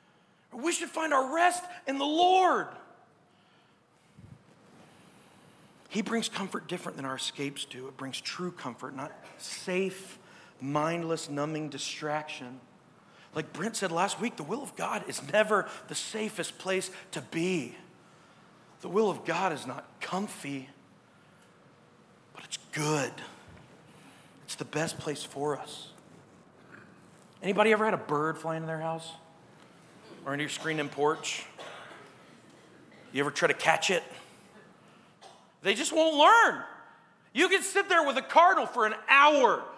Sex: male